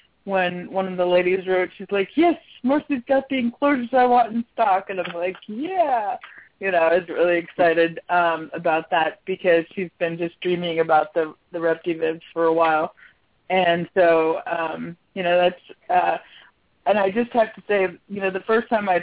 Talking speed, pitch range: 190 wpm, 170-200 Hz